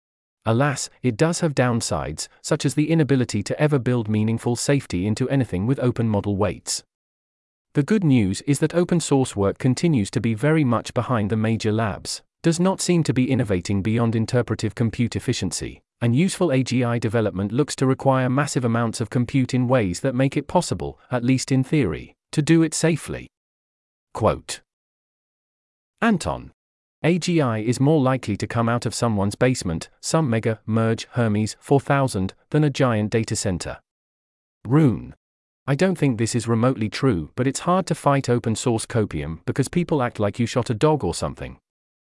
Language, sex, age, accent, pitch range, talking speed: English, male, 40-59, British, 110-140 Hz, 170 wpm